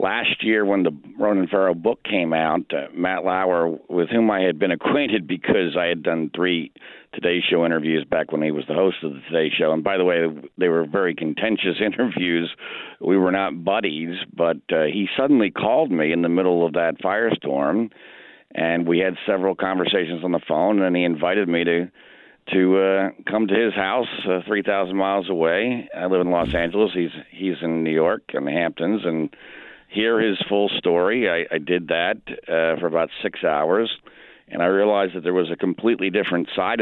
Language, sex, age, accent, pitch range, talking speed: English, male, 50-69, American, 85-100 Hz, 195 wpm